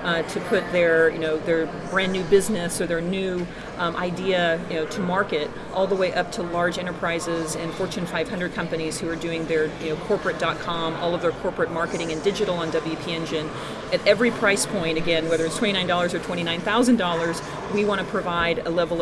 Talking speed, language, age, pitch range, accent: 200 wpm, English, 40-59, 165-190 Hz, American